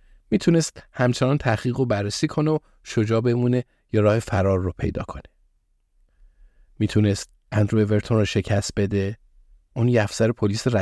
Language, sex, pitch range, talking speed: Persian, male, 100-125 Hz, 130 wpm